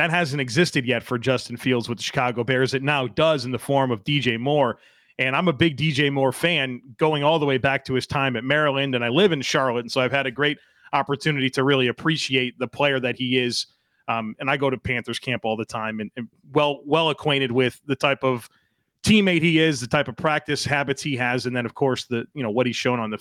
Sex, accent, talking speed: male, American, 255 wpm